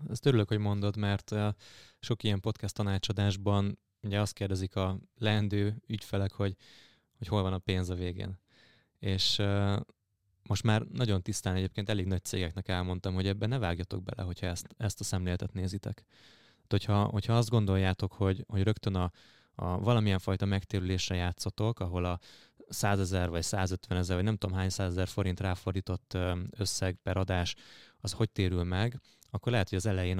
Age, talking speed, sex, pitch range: 20-39, 165 wpm, male, 95-105 Hz